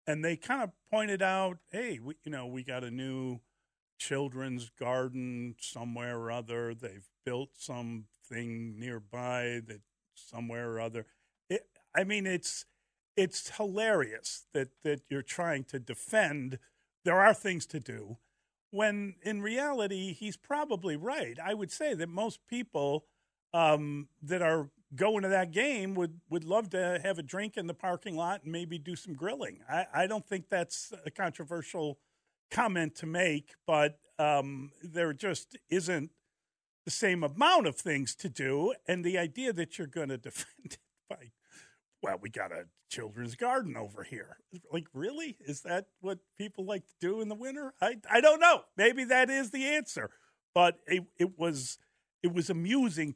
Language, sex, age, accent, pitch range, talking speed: English, male, 50-69, American, 135-195 Hz, 165 wpm